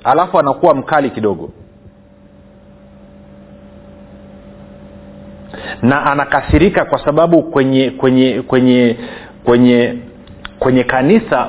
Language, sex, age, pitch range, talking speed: Swahili, male, 40-59, 120-170 Hz, 75 wpm